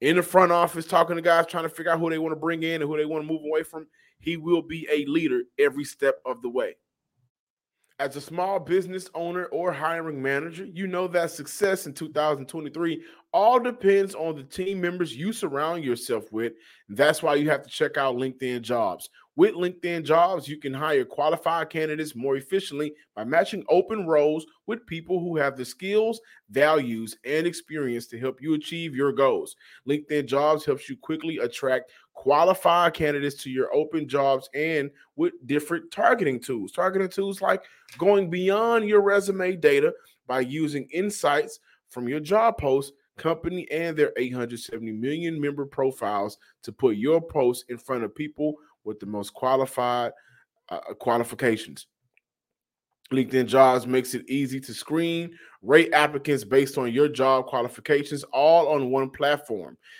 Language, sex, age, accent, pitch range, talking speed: English, male, 30-49, American, 135-180 Hz, 170 wpm